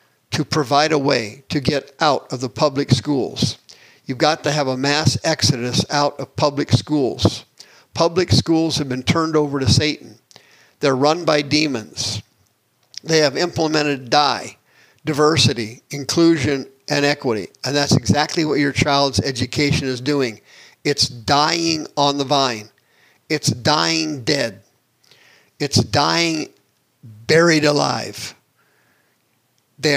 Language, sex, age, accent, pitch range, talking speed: English, male, 50-69, American, 130-155 Hz, 130 wpm